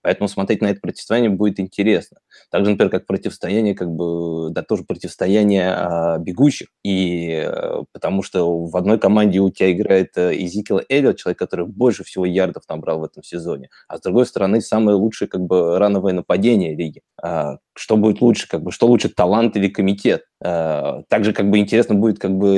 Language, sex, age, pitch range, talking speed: Russian, male, 20-39, 95-110 Hz, 160 wpm